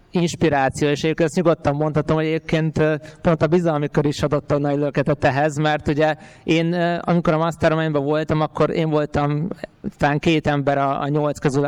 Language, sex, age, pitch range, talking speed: Hungarian, male, 20-39, 140-160 Hz, 165 wpm